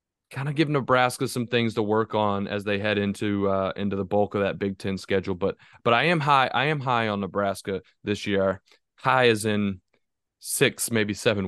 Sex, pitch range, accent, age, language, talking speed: male, 105-145 Hz, American, 20-39, English, 210 wpm